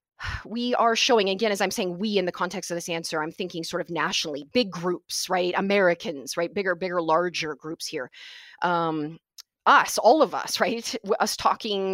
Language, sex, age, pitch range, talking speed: English, female, 20-39, 175-250 Hz, 185 wpm